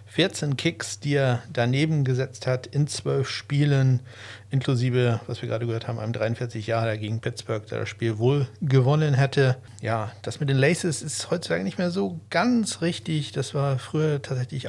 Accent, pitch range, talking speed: German, 115-140 Hz, 170 wpm